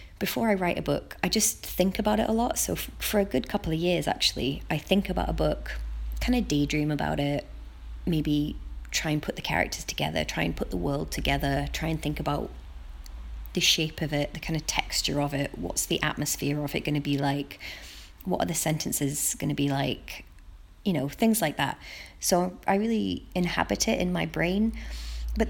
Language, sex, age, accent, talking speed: English, female, 20-39, British, 205 wpm